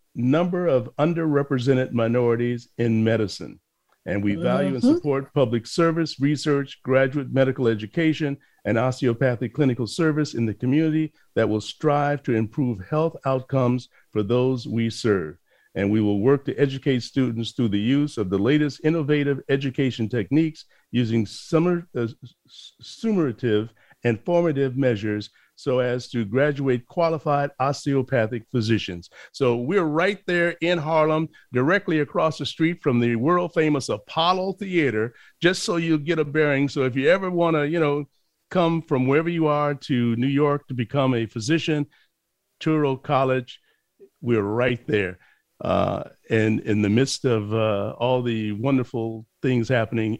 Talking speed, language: 145 wpm, English